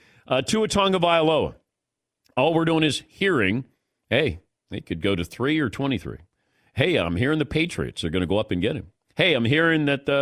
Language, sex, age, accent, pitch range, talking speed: English, male, 50-69, American, 115-160 Hz, 200 wpm